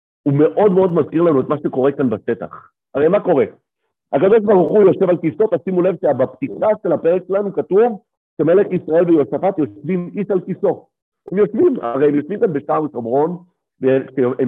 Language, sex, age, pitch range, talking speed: Hebrew, male, 50-69, 140-205 Hz, 175 wpm